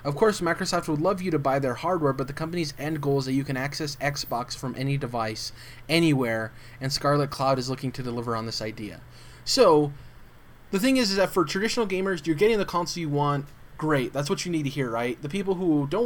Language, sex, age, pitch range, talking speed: English, male, 20-39, 130-165 Hz, 230 wpm